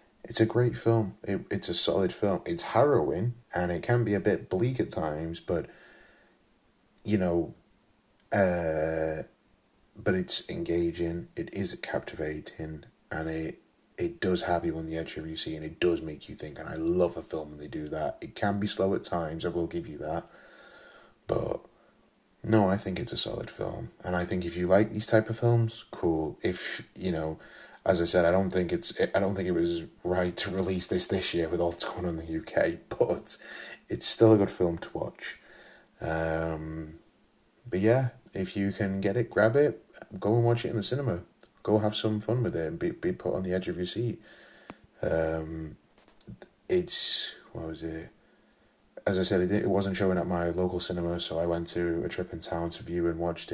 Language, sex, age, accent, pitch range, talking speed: English, male, 20-39, British, 80-105 Hz, 205 wpm